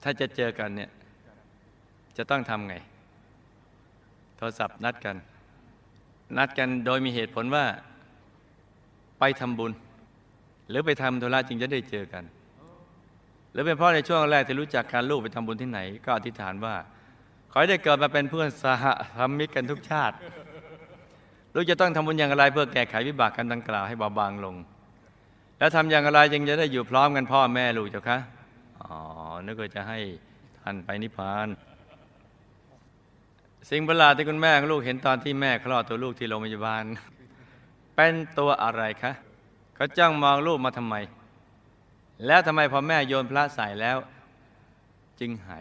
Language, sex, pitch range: Thai, male, 105-140 Hz